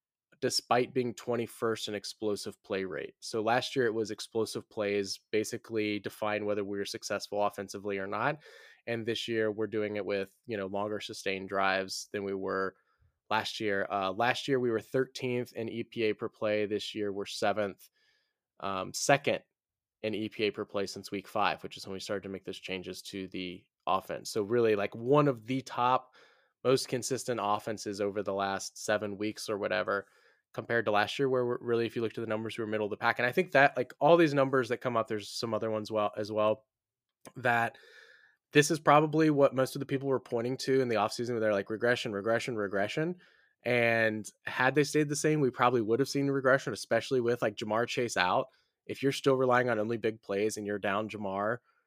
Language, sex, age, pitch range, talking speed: English, male, 10-29, 105-125 Hz, 210 wpm